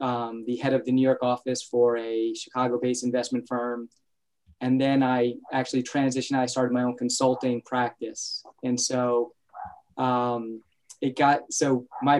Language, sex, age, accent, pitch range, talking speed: English, male, 20-39, American, 125-140 Hz, 155 wpm